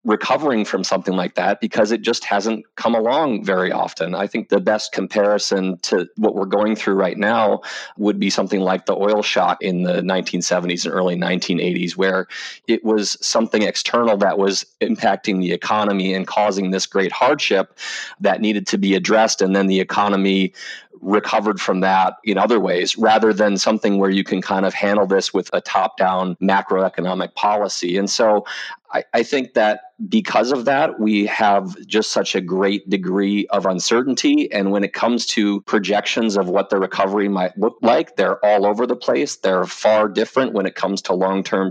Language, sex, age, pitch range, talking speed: English, male, 30-49, 95-110 Hz, 180 wpm